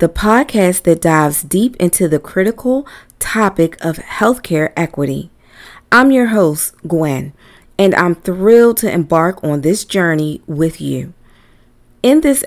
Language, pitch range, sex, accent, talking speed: English, 155-205 Hz, female, American, 135 wpm